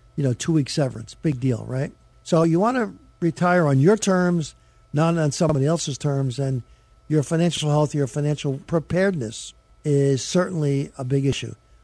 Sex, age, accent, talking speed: male, 60-79, American, 160 wpm